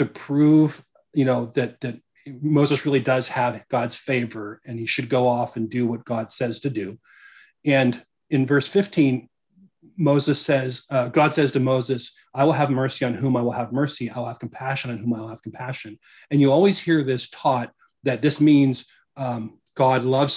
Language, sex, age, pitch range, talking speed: English, male, 40-59, 120-140 Hz, 190 wpm